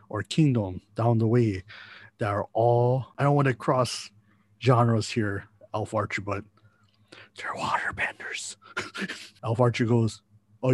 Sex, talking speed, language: male, 135 wpm, English